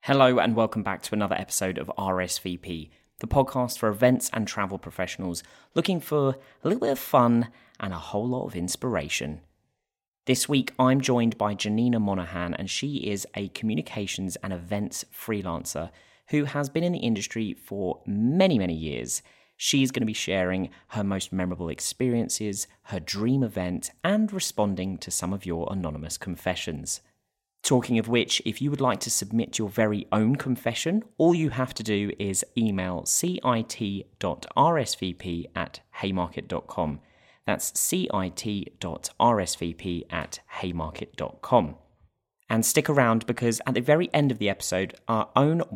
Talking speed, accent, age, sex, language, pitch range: 150 wpm, British, 30-49, male, English, 95-130 Hz